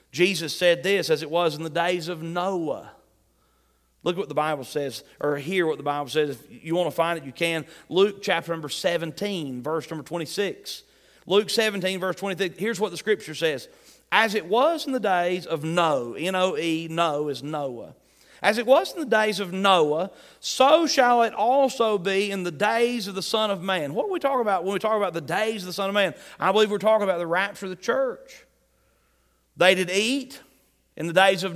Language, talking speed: English, 215 wpm